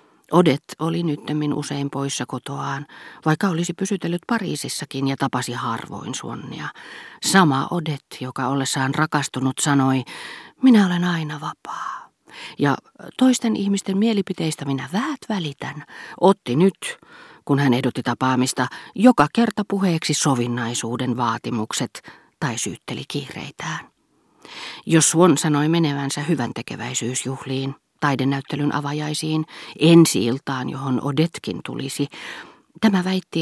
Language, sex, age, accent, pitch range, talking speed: Finnish, female, 40-59, native, 135-170 Hz, 105 wpm